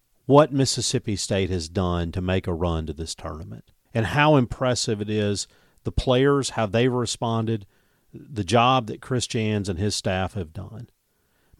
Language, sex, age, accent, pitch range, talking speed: English, male, 50-69, American, 95-125 Hz, 175 wpm